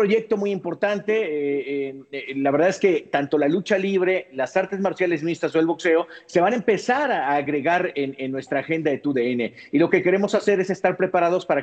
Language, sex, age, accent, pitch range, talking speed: Spanish, male, 50-69, Mexican, 150-210 Hz, 215 wpm